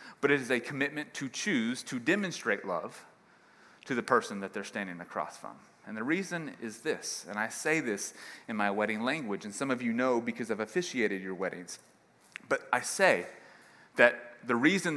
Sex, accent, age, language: male, American, 30-49, English